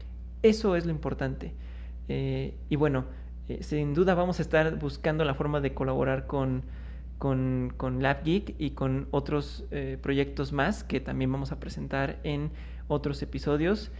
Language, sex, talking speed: Spanish, male, 155 wpm